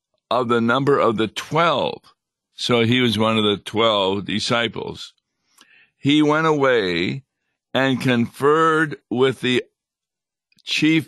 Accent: American